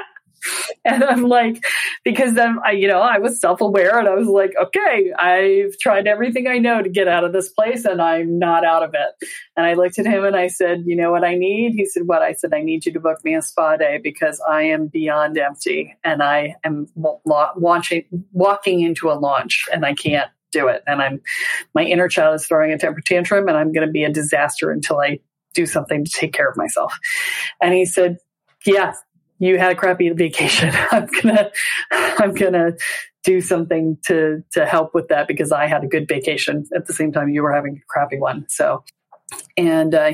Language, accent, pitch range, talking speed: English, American, 160-230 Hz, 215 wpm